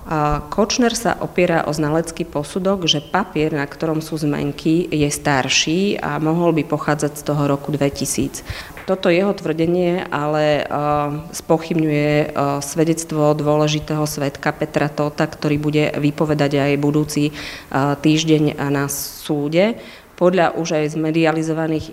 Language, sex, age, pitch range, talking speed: Slovak, female, 30-49, 145-155 Hz, 120 wpm